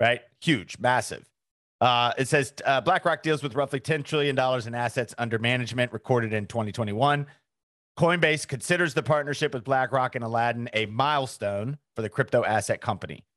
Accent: American